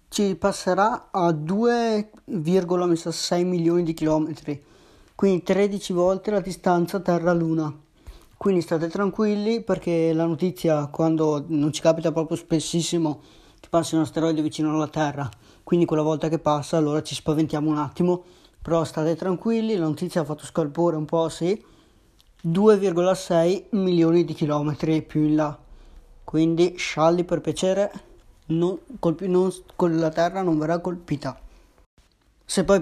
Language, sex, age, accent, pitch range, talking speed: Italian, male, 20-39, native, 160-190 Hz, 135 wpm